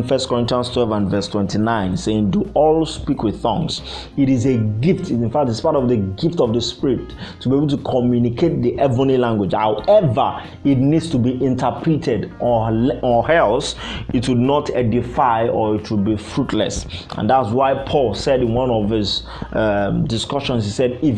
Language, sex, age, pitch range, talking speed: English, male, 30-49, 105-135 Hz, 185 wpm